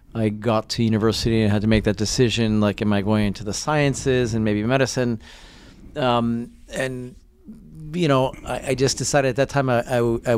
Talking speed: 190 wpm